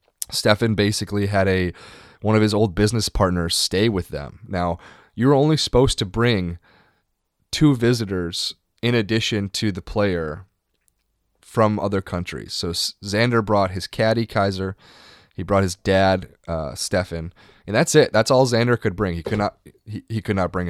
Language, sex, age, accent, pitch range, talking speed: English, male, 20-39, American, 90-110 Hz, 170 wpm